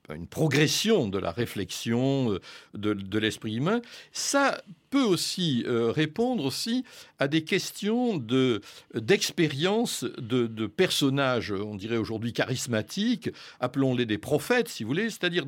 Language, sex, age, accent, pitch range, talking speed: French, male, 60-79, French, 120-195 Hz, 130 wpm